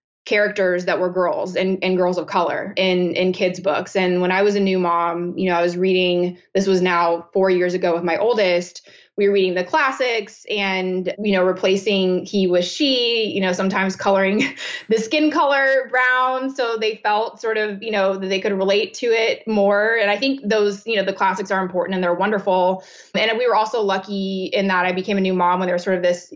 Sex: female